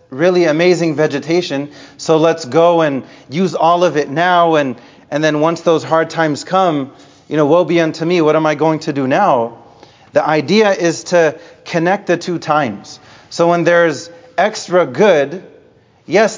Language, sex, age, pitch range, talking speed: English, male, 30-49, 145-175 Hz, 170 wpm